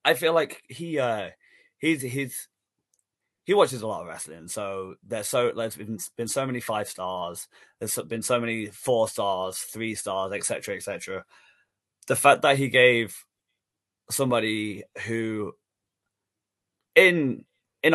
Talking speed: 145 wpm